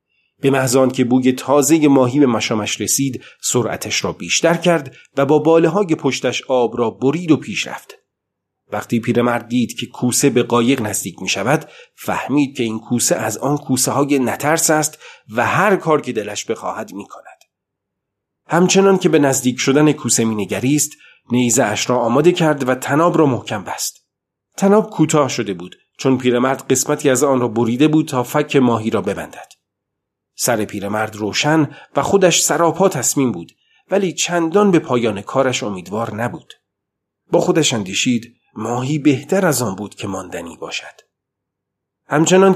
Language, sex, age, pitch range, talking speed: Persian, male, 40-59, 115-150 Hz, 160 wpm